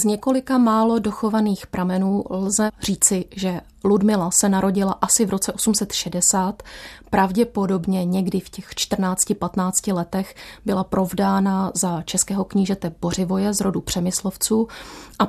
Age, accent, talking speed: 30-49, native, 120 wpm